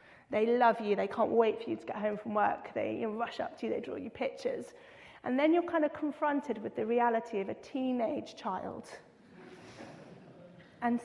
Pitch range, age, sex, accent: 215-280 Hz, 30-49, female, British